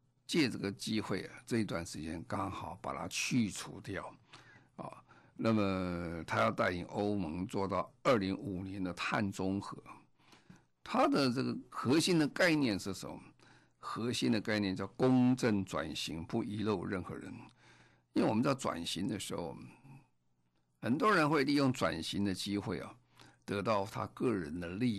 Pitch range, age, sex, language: 85-115 Hz, 50-69, male, Chinese